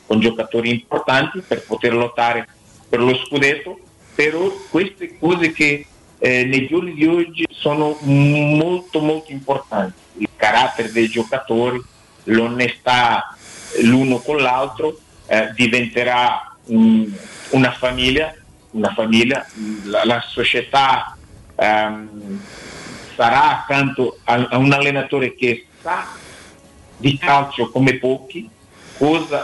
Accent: native